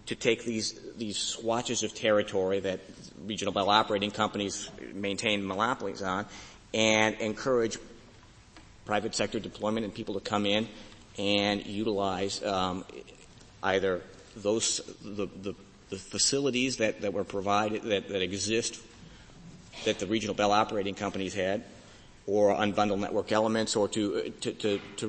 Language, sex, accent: English, male, American